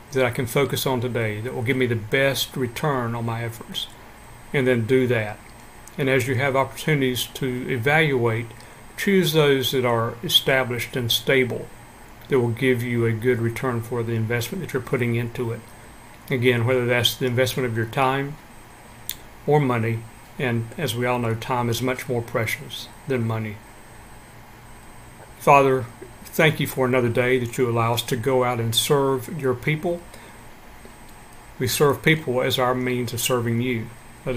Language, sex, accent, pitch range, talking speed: English, male, American, 115-130 Hz, 170 wpm